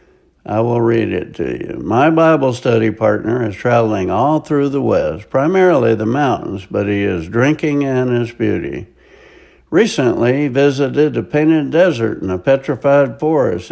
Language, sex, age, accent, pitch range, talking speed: English, male, 60-79, American, 115-155 Hz, 160 wpm